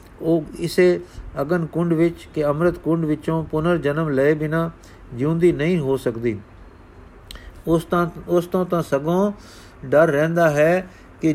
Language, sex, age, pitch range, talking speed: Punjabi, male, 50-69, 125-170 Hz, 135 wpm